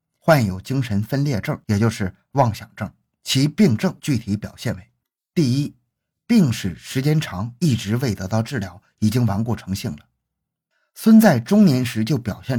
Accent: native